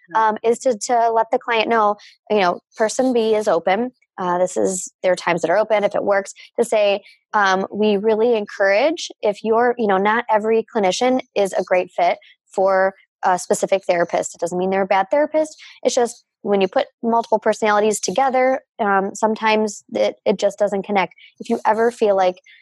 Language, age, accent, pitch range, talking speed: English, 20-39, American, 190-230 Hz, 195 wpm